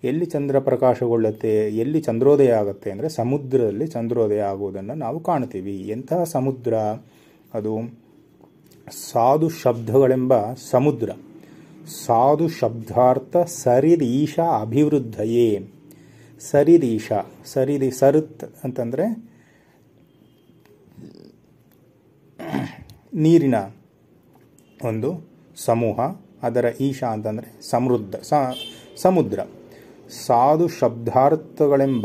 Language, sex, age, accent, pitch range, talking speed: Kannada, male, 30-49, native, 115-150 Hz, 70 wpm